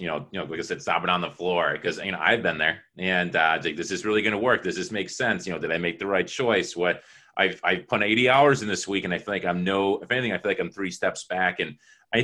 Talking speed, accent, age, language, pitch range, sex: 325 wpm, American, 30-49, English, 95-120 Hz, male